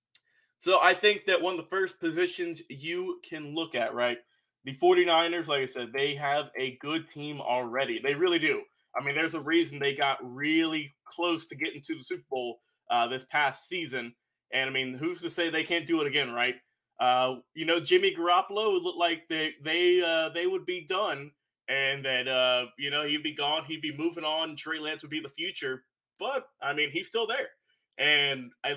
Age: 20-39